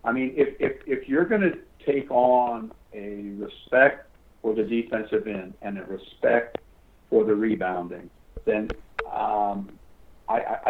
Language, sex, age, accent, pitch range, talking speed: English, male, 60-79, American, 105-130 Hz, 140 wpm